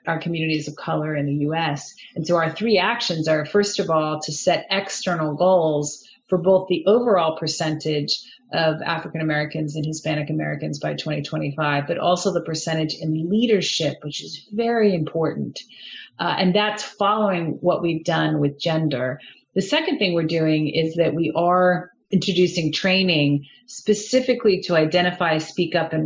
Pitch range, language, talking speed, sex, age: 155-210 Hz, English, 160 wpm, female, 30-49